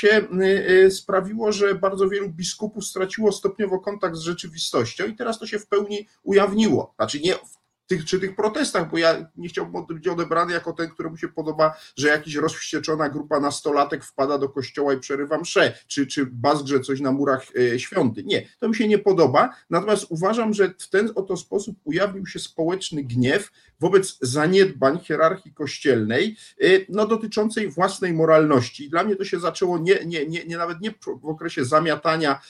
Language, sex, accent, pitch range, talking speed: Polish, male, native, 150-200 Hz, 175 wpm